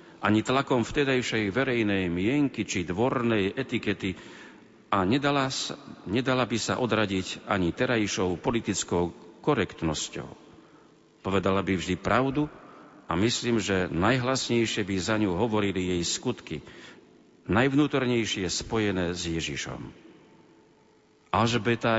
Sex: male